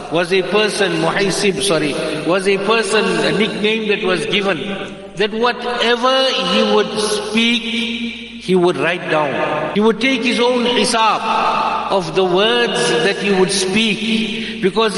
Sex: male